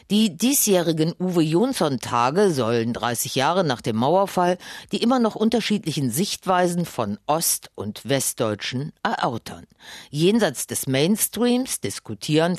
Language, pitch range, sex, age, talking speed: German, 120-190 Hz, female, 50-69, 110 wpm